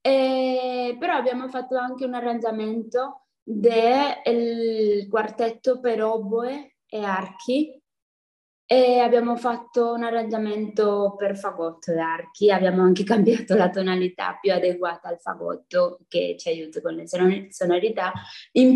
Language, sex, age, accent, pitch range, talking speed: Italian, female, 20-39, native, 200-240 Hz, 120 wpm